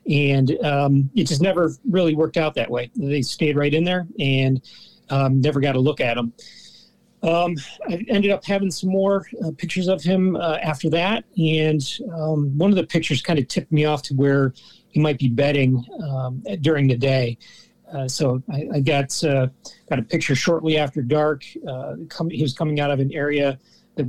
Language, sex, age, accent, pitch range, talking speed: English, male, 40-59, American, 135-160 Hz, 200 wpm